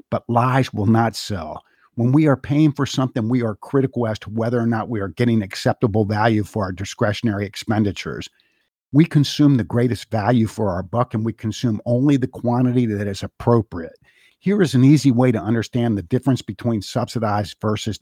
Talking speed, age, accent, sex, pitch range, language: 190 wpm, 50-69, American, male, 105-125 Hz, English